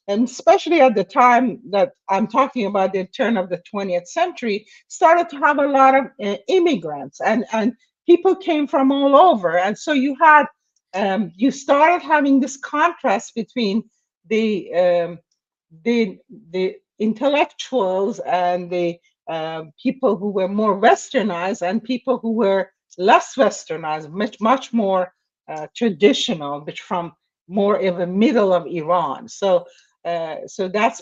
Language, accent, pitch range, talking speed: English, Israeli, 185-275 Hz, 150 wpm